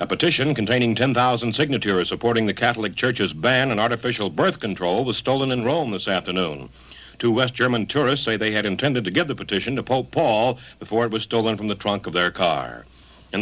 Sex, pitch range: male, 105-130 Hz